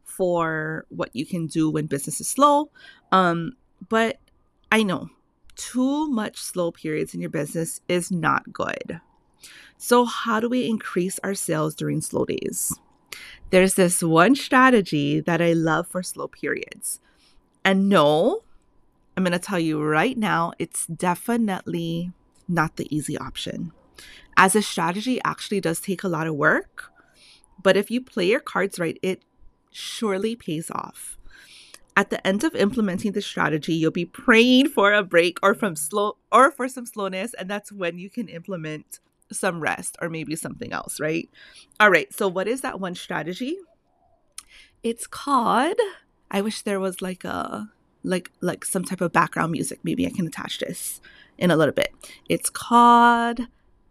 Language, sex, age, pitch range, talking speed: English, female, 30-49, 165-225 Hz, 165 wpm